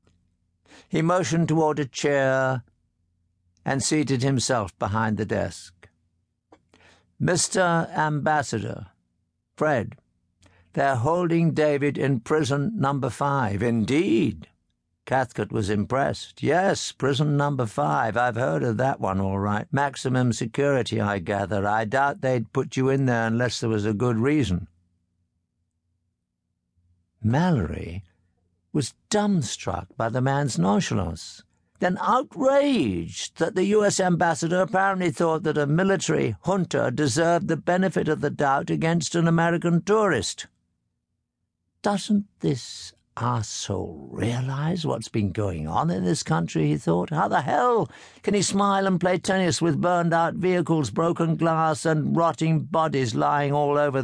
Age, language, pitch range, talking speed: 60-79, English, 100-165 Hz, 130 wpm